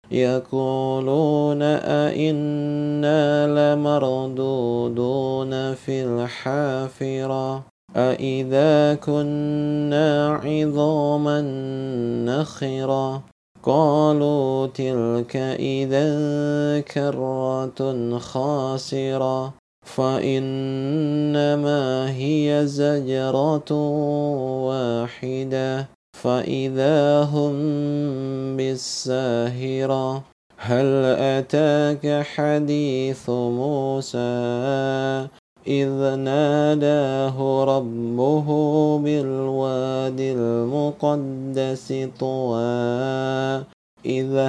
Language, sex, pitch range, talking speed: Indonesian, male, 130-145 Hz, 45 wpm